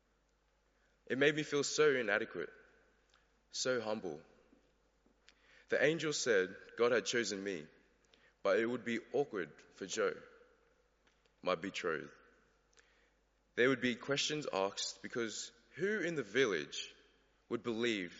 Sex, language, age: male, English, 20-39